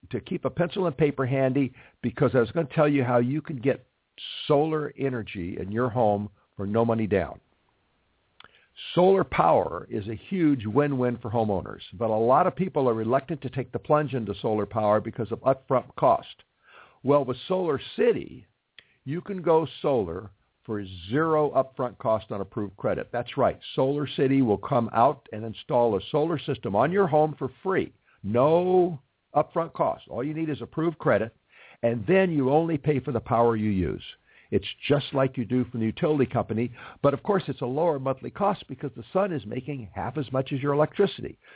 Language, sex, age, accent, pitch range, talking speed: English, male, 60-79, American, 115-150 Hz, 190 wpm